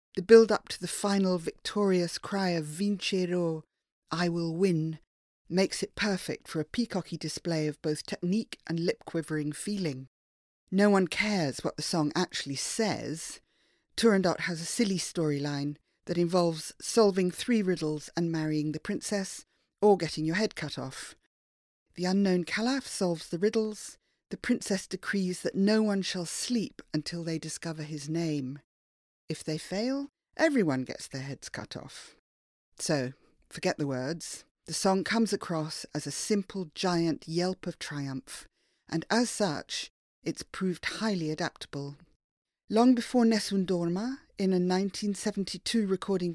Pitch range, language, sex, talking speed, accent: 155-200 Hz, English, female, 145 wpm, British